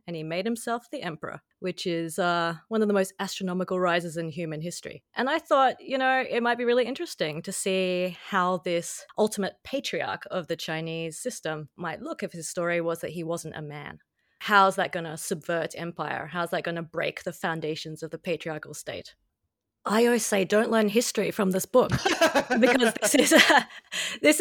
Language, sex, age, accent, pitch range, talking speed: English, female, 30-49, Australian, 175-240 Hz, 195 wpm